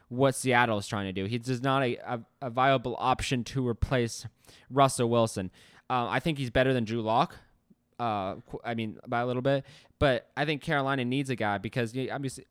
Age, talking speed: 20-39, 190 wpm